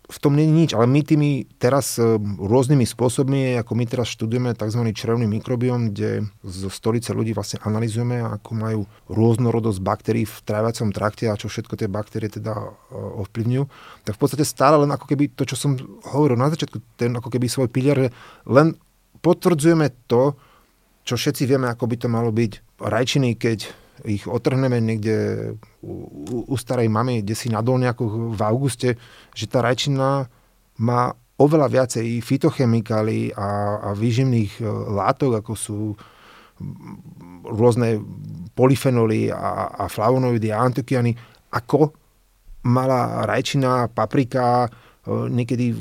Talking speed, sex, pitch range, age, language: 140 wpm, male, 110-130 Hz, 30-49, Slovak